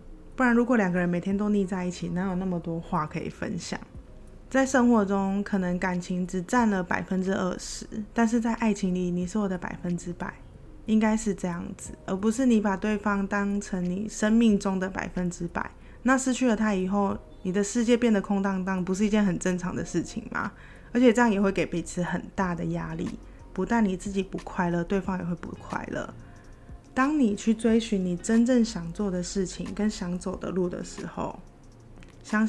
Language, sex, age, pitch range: Chinese, female, 20-39, 180-220 Hz